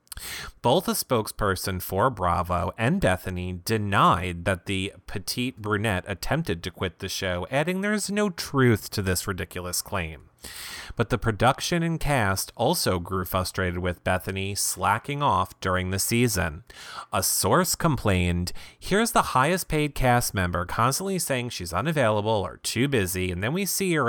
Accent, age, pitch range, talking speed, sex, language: American, 30-49, 95-140 Hz, 155 wpm, male, English